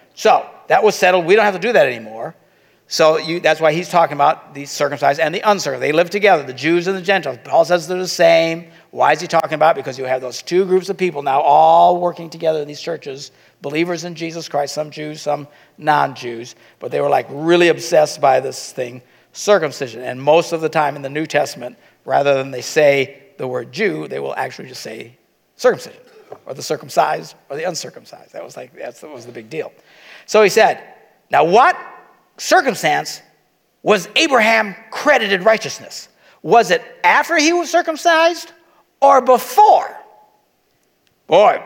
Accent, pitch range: American, 145-205 Hz